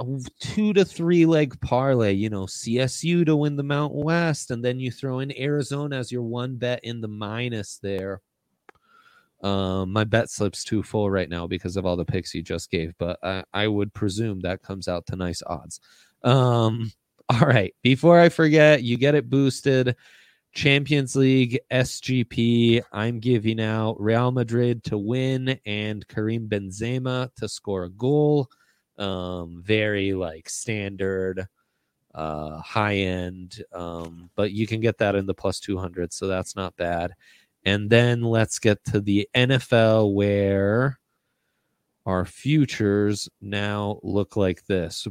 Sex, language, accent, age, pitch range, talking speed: male, English, American, 20-39, 100-125 Hz, 155 wpm